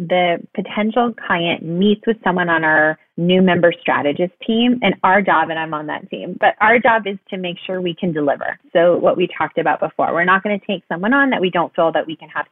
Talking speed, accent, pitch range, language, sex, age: 245 wpm, American, 165-215 Hz, English, female, 30-49